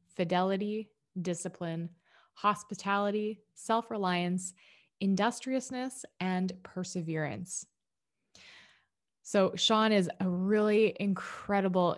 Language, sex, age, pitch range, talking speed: English, female, 20-39, 170-195 Hz, 70 wpm